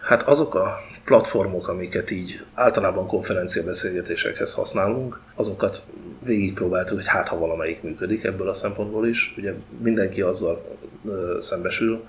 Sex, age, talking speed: male, 30-49, 125 wpm